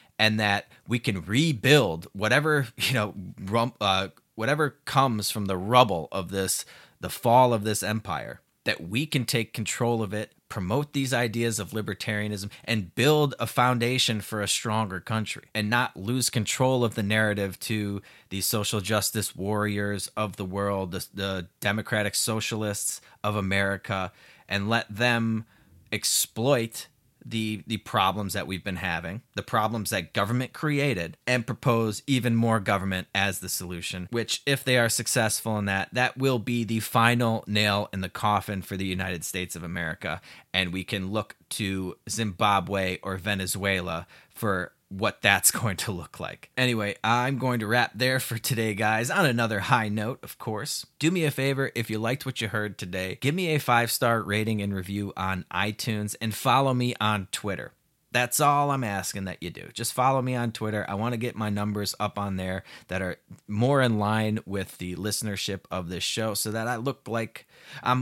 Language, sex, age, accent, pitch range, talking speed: English, male, 30-49, American, 100-120 Hz, 180 wpm